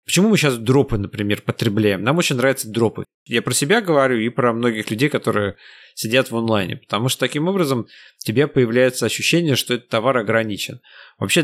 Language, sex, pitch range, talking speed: Russian, male, 110-135 Hz, 185 wpm